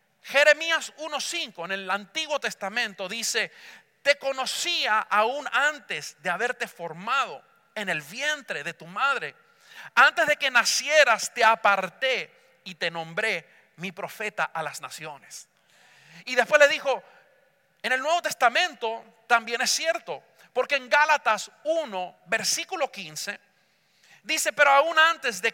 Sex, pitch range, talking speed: male, 210-300 Hz, 130 wpm